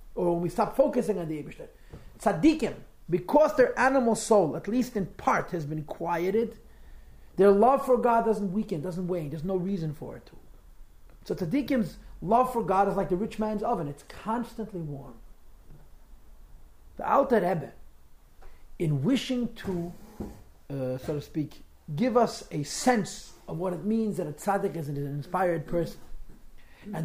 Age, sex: 40-59, male